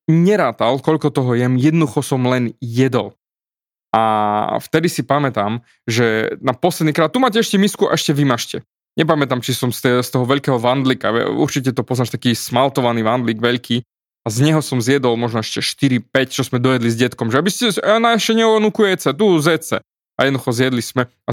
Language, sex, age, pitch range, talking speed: Slovak, male, 20-39, 125-165 Hz, 175 wpm